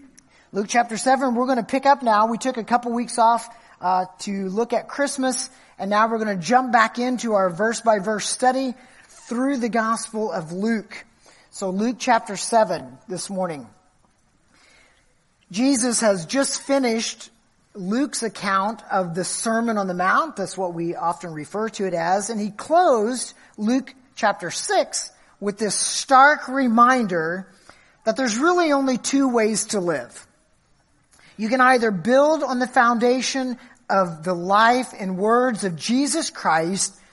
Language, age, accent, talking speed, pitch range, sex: English, 40-59, American, 155 wpm, 195-260 Hz, male